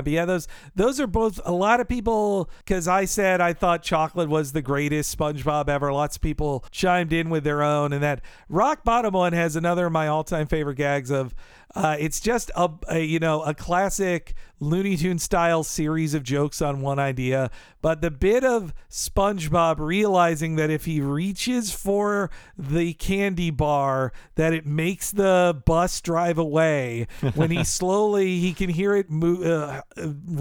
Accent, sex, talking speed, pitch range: American, male, 180 wpm, 150-200 Hz